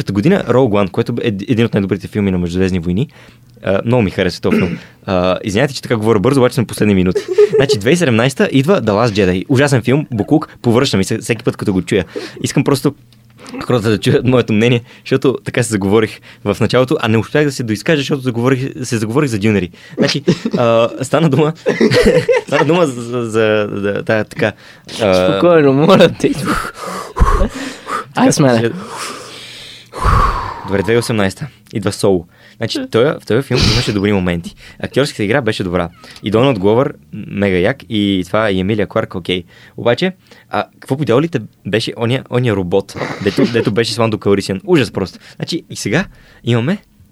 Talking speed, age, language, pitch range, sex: 160 wpm, 20-39, Bulgarian, 100-135 Hz, male